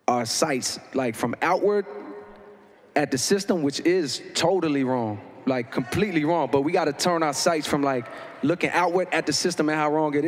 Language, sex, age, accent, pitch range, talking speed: English, male, 20-39, American, 140-180 Hz, 195 wpm